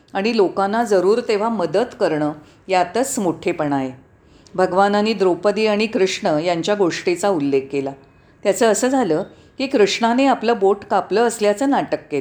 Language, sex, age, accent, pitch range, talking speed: Marathi, female, 40-59, native, 170-235 Hz, 105 wpm